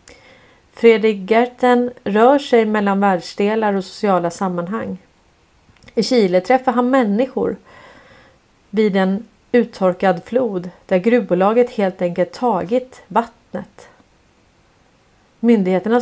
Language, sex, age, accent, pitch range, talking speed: Swedish, female, 30-49, native, 185-235 Hz, 95 wpm